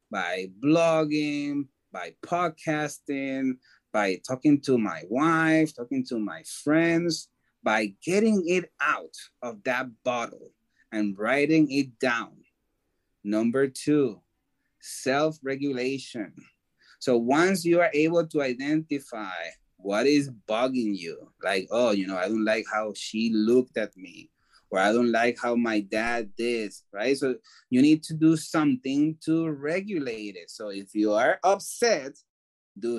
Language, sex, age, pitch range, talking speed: English, male, 30-49, 115-155 Hz, 135 wpm